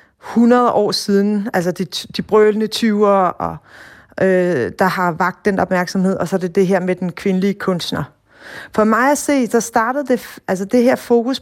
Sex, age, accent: female, 30-49, native